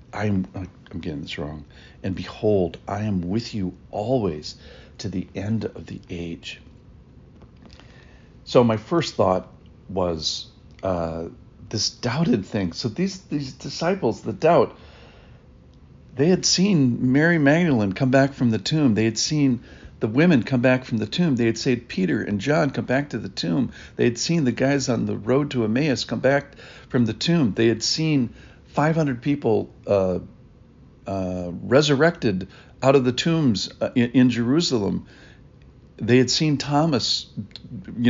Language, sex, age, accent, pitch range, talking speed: English, male, 50-69, American, 100-140 Hz, 155 wpm